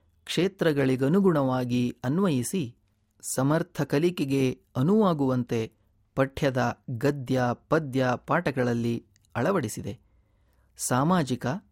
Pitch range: 120-150 Hz